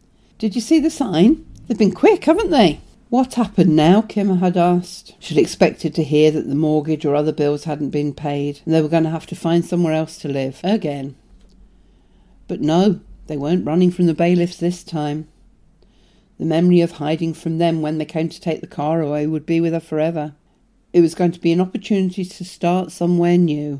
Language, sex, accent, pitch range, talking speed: English, female, British, 155-185 Hz, 205 wpm